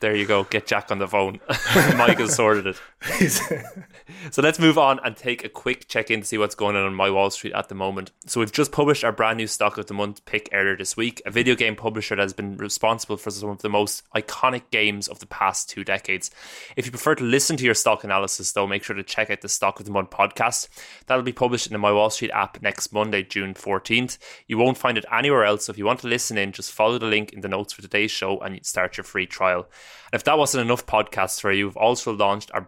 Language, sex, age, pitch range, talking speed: English, male, 20-39, 100-115 Hz, 260 wpm